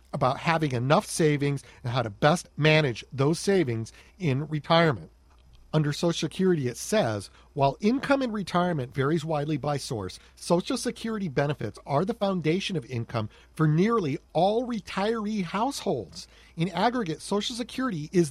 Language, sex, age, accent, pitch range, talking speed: English, male, 40-59, American, 145-210 Hz, 145 wpm